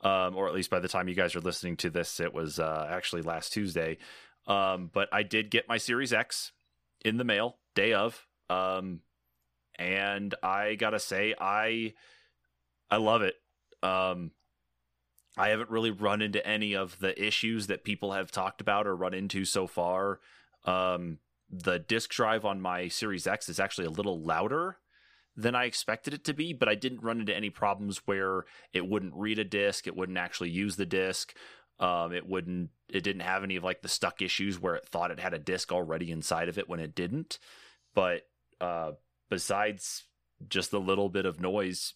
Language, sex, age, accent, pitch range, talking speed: English, male, 30-49, American, 85-100 Hz, 190 wpm